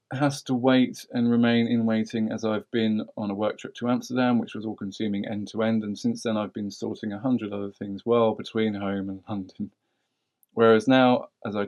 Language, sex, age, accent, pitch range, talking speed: English, male, 20-39, British, 100-115 Hz, 210 wpm